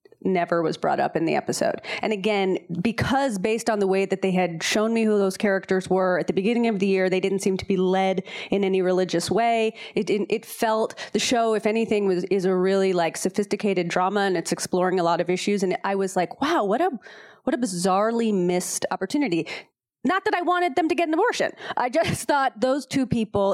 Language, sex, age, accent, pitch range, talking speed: English, female, 30-49, American, 190-240 Hz, 225 wpm